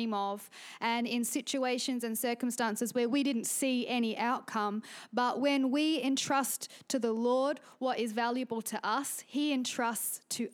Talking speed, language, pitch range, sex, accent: 155 wpm, English, 230-270 Hz, female, Australian